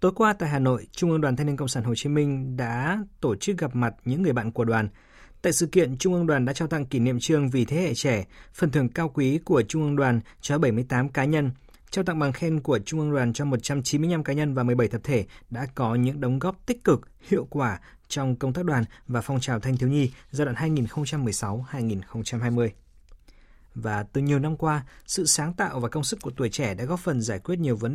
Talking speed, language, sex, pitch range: 240 wpm, Vietnamese, male, 120-150 Hz